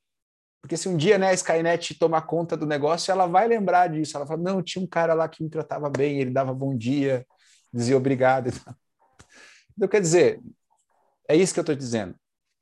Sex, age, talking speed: male, 30-49, 205 wpm